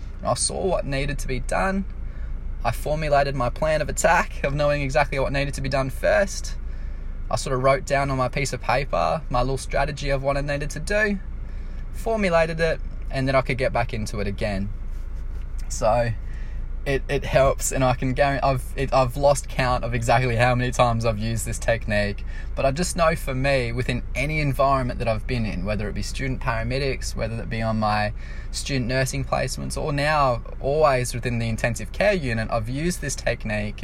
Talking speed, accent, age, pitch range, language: 195 wpm, Australian, 20-39, 110-140 Hz, English